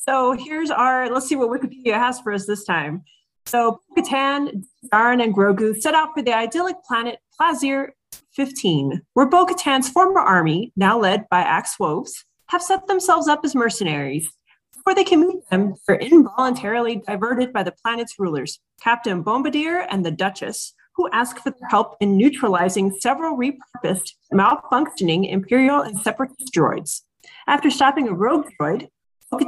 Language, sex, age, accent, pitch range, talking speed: English, female, 30-49, American, 195-275 Hz, 155 wpm